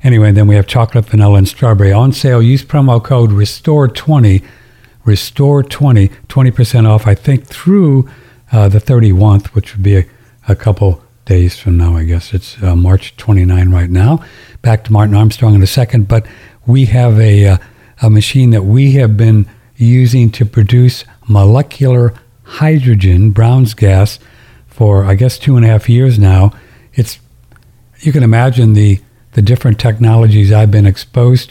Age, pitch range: 60-79, 100-120 Hz